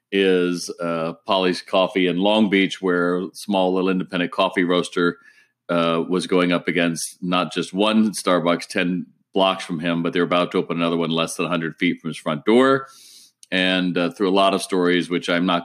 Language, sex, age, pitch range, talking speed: English, male, 40-59, 85-95 Hz, 200 wpm